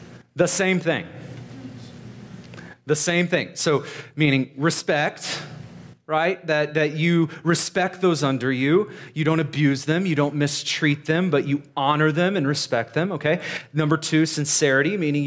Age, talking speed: 30-49, 145 wpm